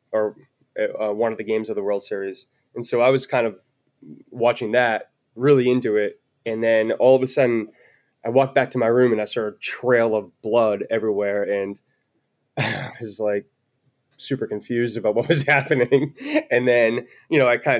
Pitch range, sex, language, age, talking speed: 110-140 Hz, male, English, 20-39, 190 wpm